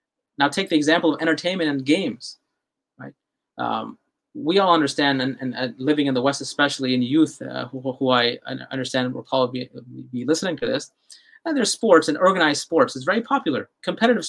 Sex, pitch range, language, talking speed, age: male, 145-200 Hz, English, 185 wpm, 20-39